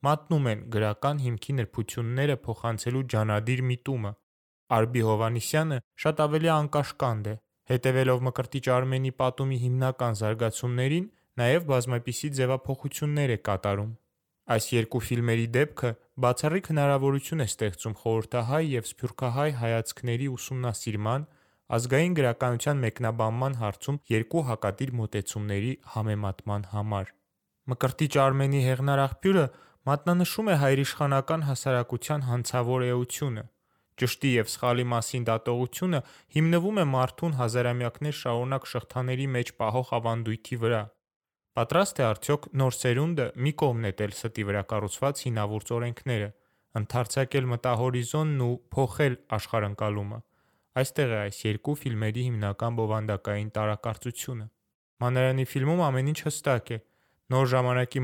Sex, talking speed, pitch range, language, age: male, 85 wpm, 115-135 Hz, English, 20-39